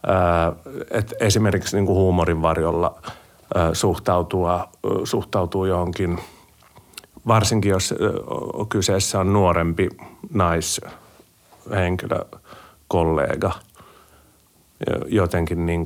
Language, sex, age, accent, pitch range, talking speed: Finnish, male, 50-69, native, 90-110 Hz, 80 wpm